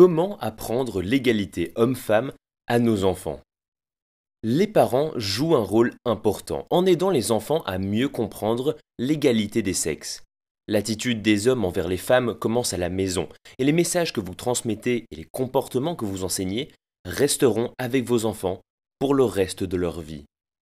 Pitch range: 100-155 Hz